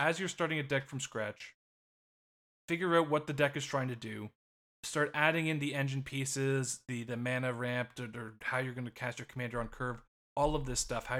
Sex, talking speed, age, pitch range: male, 220 wpm, 20-39, 110-135 Hz